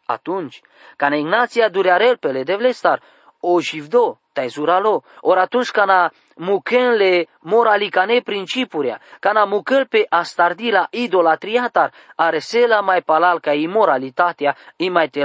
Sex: male